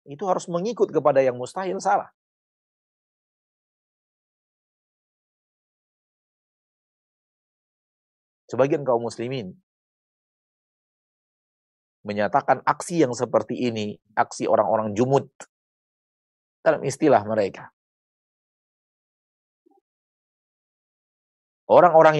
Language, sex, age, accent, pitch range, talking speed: Indonesian, male, 30-49, native, 125-170 Hz, 60 wpm